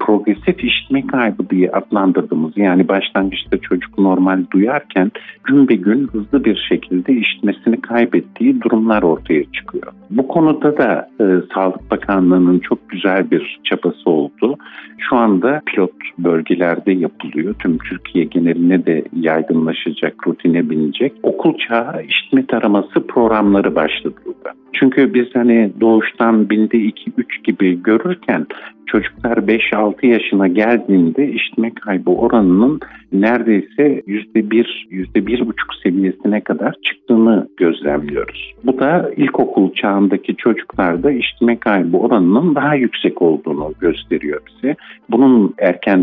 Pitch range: 90-115 Hz